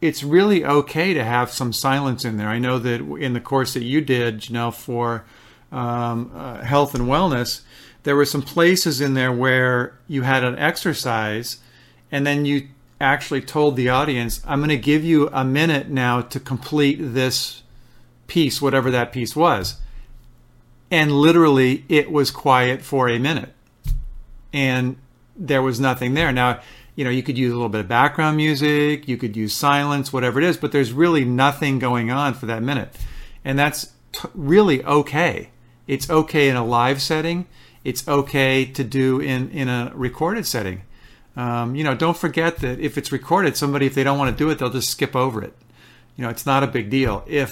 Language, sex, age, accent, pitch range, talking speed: English, male, 50-69, American, 125-145 Hz, 190 wpm